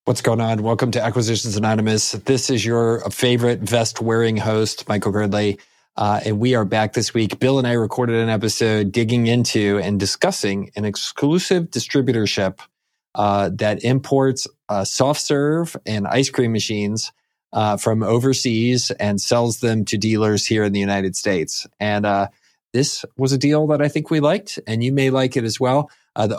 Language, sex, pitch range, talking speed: English, male, 110-135 Hz, 175 wpm